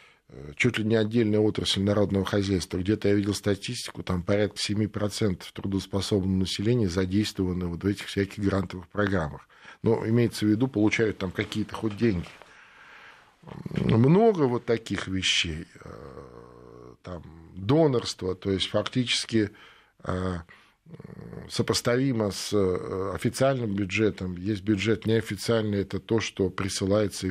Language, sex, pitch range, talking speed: Russian, male, 95-110 Hz, 115 wpm